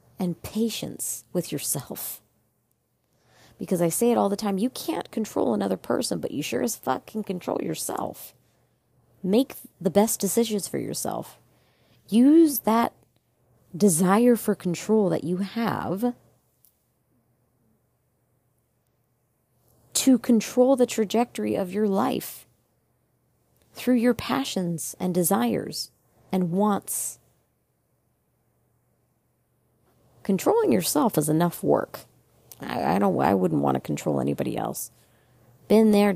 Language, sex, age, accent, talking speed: English, female, 30-49, American, 115 wpm